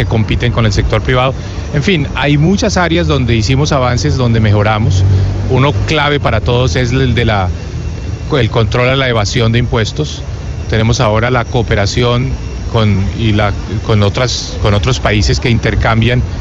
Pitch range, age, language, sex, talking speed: 110-140 Hz, 30-49, Spanish, male, 165 wpm